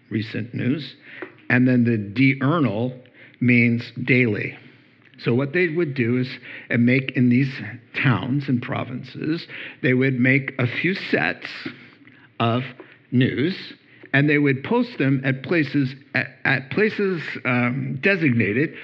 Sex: male